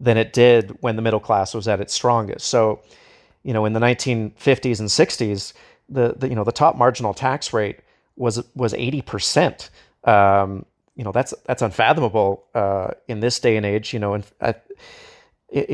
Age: 40-59